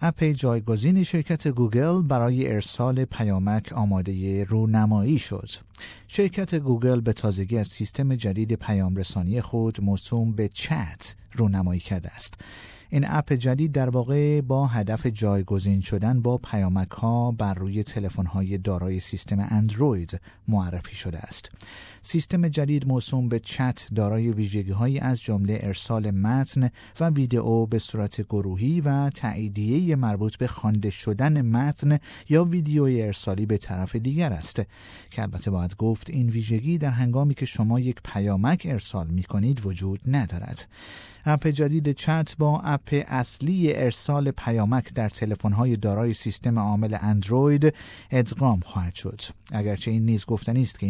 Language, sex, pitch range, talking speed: Persian, male, 100-135 Hz, 140 wpm